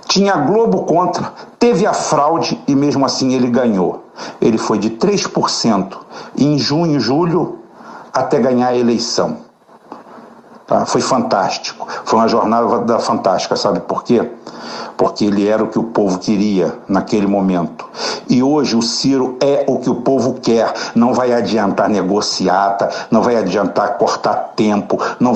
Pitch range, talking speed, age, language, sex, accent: 105-125 Hz, 145 wpm, 60-79, Portuguese, male, Brazilian